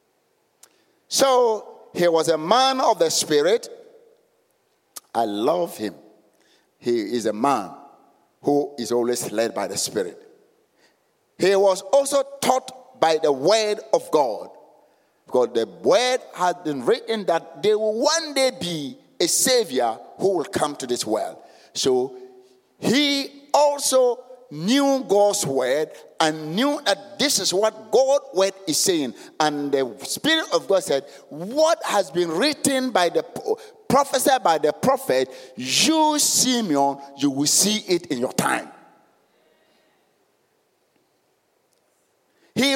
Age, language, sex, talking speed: 50-69, English, male, 130 wpm